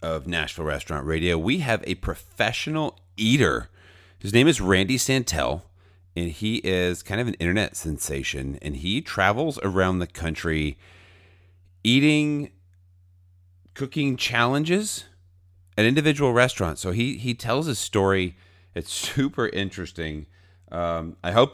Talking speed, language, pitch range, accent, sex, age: 130 wpm, English, 80-100 Hz, American, male, 40-59